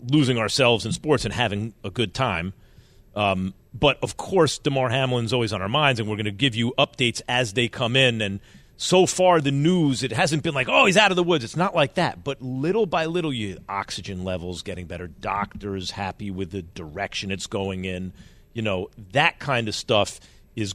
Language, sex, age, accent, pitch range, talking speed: English, male, 40-59, American, 105-155 Hz, 210 wpm